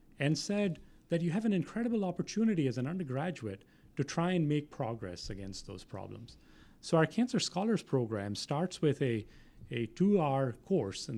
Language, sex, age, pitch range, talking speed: English, male, 30-49, 110-165 Hz, 165 wpm